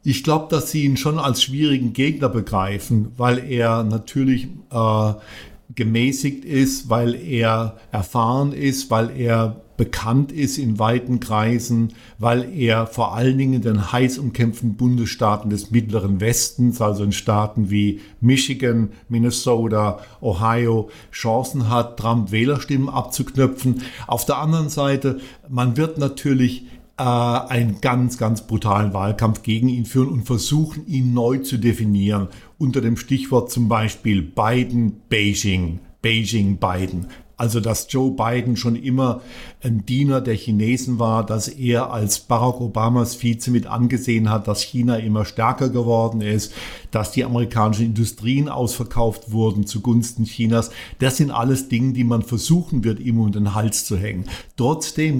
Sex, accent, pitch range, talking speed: male, German, 110-130 Hz, 140 wpm